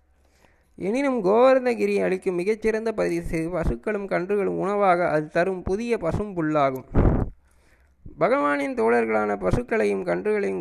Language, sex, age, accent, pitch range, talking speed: Tamil, male, 20-39, native, 150-215 Hz, 90 wpm